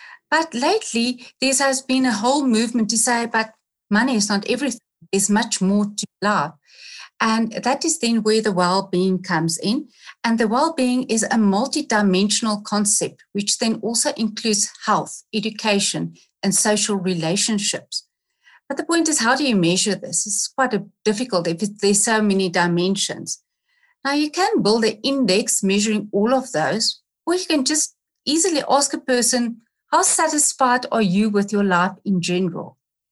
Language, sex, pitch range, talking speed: English, female, 200-260 Hz, 165 wpm